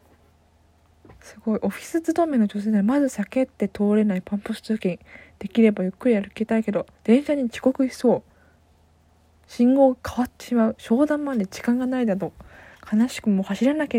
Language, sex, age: Japanese, female, 20-39